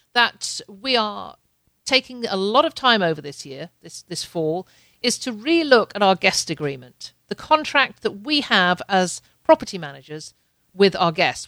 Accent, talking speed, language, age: British, 165 wpm, English, 50-69